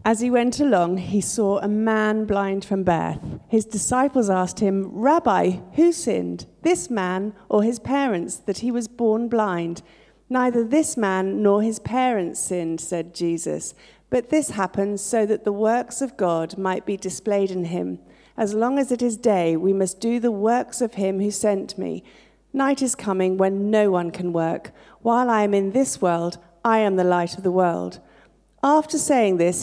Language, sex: English, female